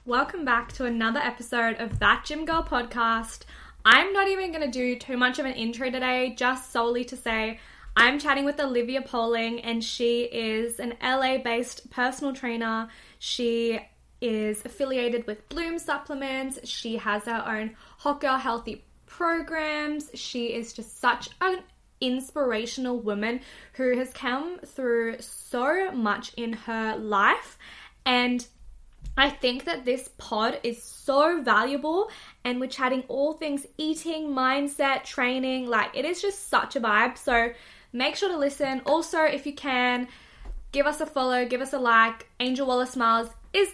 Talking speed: 155 wpm